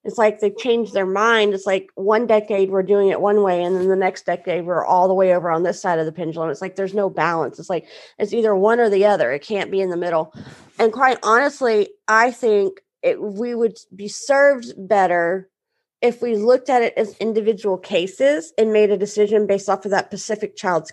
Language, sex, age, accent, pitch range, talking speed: English, female, 30-49, American, 200-260 Hz, 225 wpm